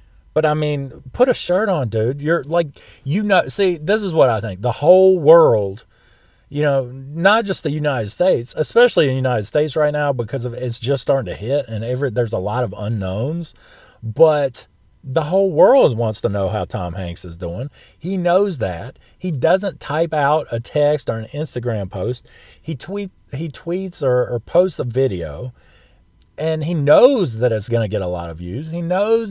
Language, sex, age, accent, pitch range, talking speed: English, male, 40-59, American, 115-175 Hz, 200 wpm